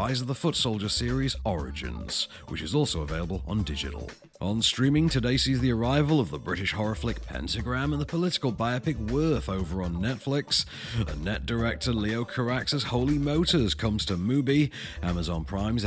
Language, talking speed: English, 165 wpm